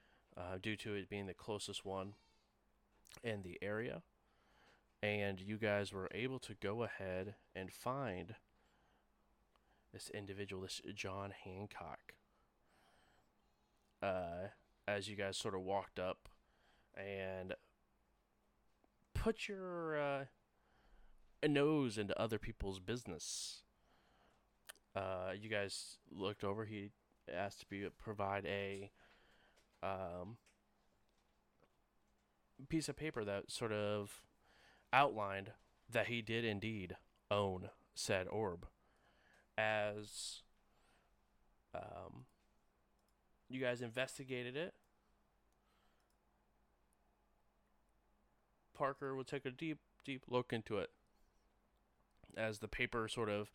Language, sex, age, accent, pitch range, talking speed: English, male, 20-39, American, 100-120 Hz, 100 wpm